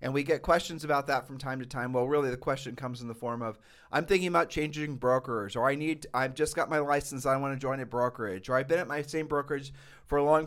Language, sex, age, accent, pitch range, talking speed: English, male, 40-59, American, 125-150 Hz, 275 wpm